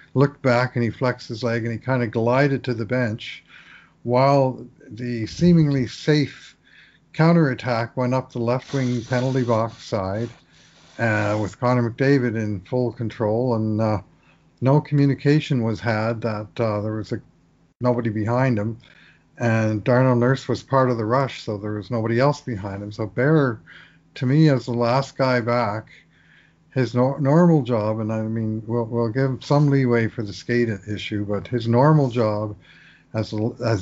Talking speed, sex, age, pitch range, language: 165 wpm, male, 50-69, 110-130 Hz, English